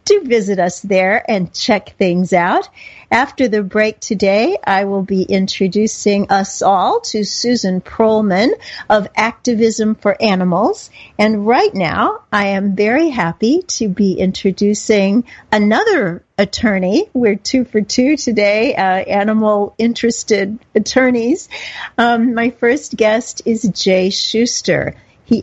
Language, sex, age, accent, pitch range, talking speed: English, female, 50-69, American, 195-235 Hz, 125 wpm